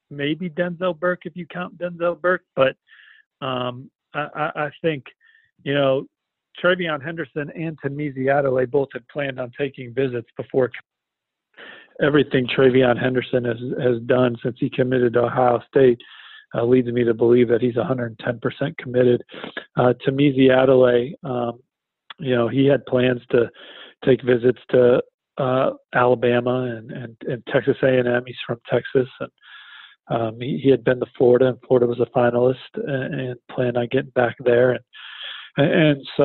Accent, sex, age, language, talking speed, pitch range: American, male, 40-59, English, 155 wpm, 120-140 Hz